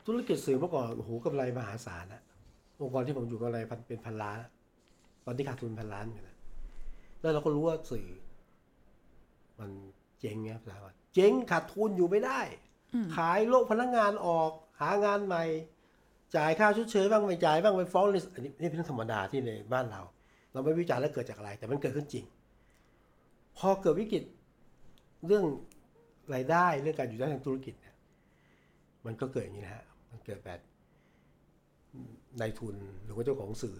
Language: Thai